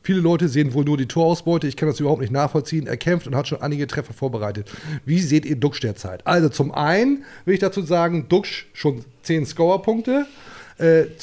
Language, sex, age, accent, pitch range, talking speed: German, male, 30-49, German, 145-190 Hz, 210 wpm